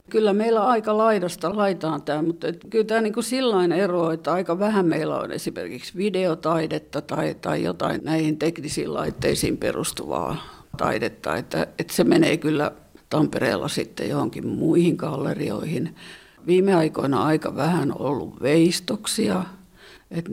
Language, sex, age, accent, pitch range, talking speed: English, female, 60-79, Finnish, 160-195 Hz, 135 wpm